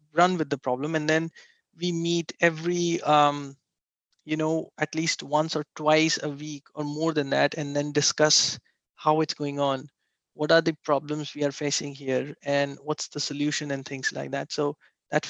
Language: English